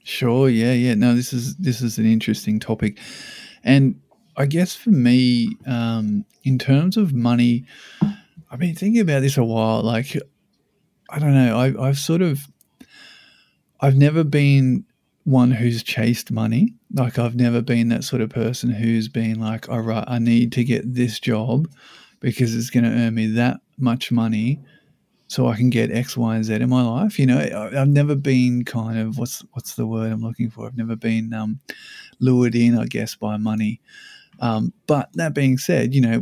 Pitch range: 115-135 Hz